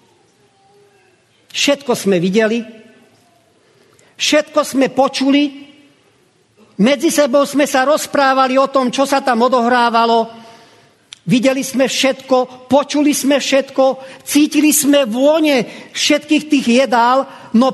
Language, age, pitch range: Slovak, 50-69, 200-275 Hz